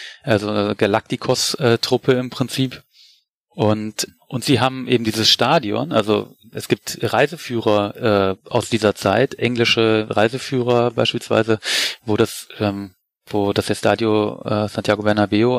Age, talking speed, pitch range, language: 30-49, 130 wpm, 105-125 Hz, German